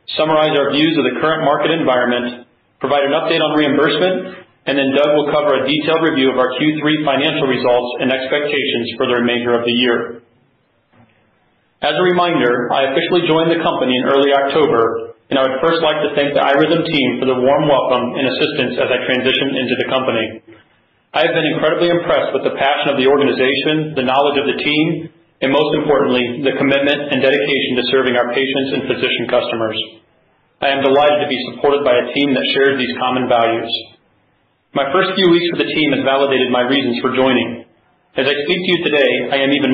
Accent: American